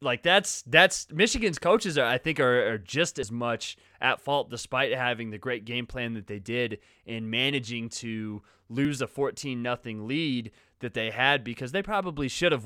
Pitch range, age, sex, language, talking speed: 115-135 Hz, 20-39, male, English, 190 wpm